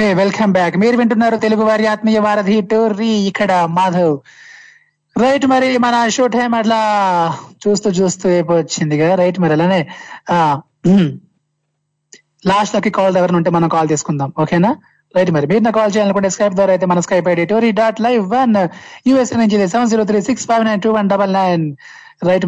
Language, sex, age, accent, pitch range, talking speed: Telugu, male, 20-39, native, 180-225 Hz, 135 wpm